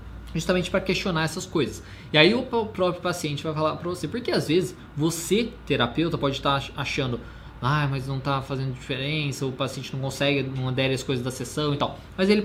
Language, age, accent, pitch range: Portuguese, 20-39, Brazilian, 125-165 Hz